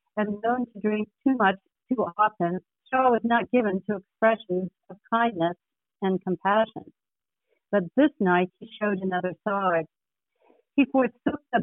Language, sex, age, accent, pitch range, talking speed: English, female, 60-79, American, 185-235 Hz, 145 wpm